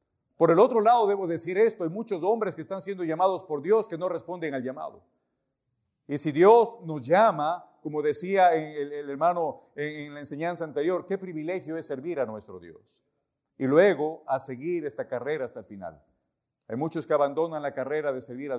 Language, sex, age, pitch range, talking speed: English, male, 50-69, 145-180 Hz, 190 wpm